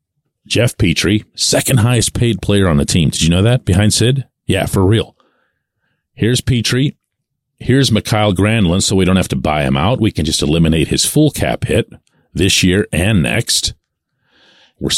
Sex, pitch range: male, 95-130 Hz